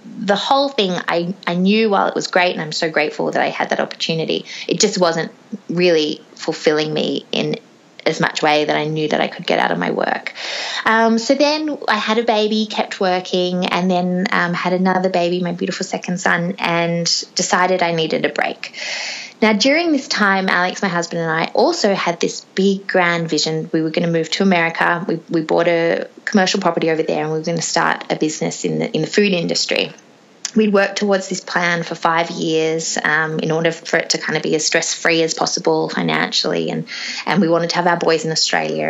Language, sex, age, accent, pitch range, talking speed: English, female, 20-39, Australian, 165-210 Hz, 220 wpm